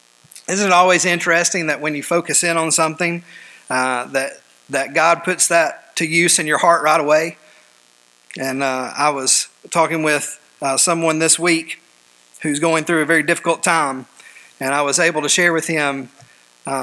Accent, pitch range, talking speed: American, 150-180 Hz, 180 wpm